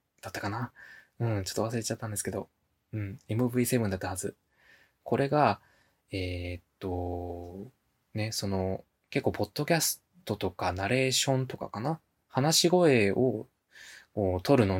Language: Japanese